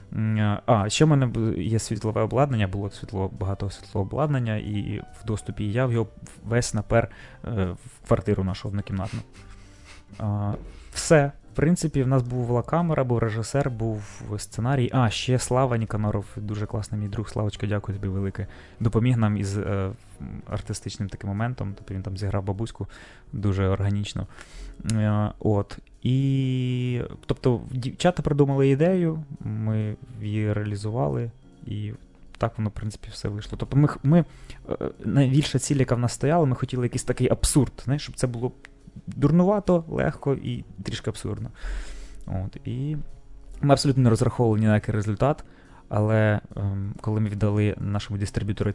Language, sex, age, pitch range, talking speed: Ukrainian, male, 20-39, 105-130 Hz, 150 wpm